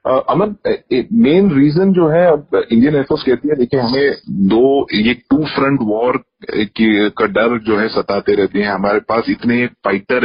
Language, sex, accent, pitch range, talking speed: Hindi, male, native, 110-155 Hz, 170 wpm